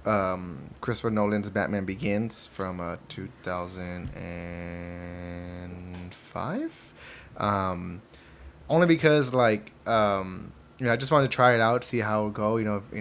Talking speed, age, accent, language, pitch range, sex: 145 wpm, 20-39, American, English, 95-115 Hz, male